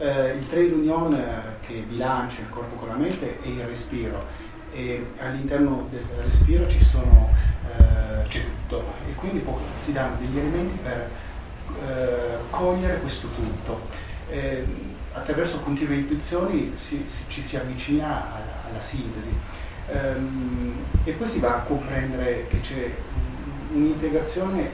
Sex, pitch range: male, 110-140 Hz